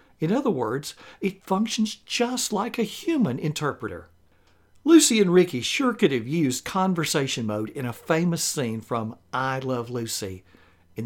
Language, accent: English, American